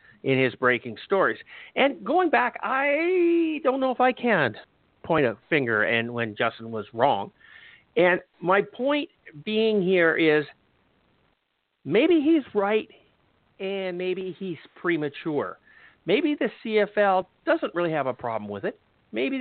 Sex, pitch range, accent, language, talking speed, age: male, 155-240 Hz, American, English, 140 wpm, 50-69